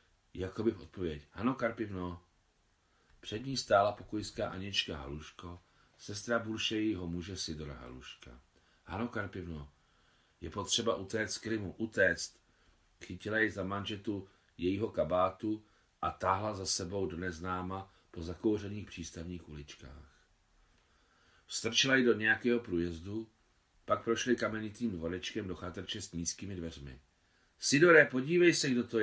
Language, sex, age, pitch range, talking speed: Czech, male, 40-59, 85-110 Hz, 120 wpm